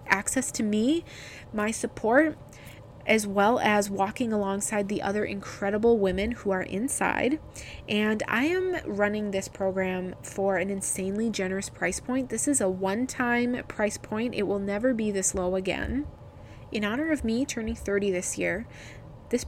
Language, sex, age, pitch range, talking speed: English, female, 20-39, 195-230 Hz, 155 wpm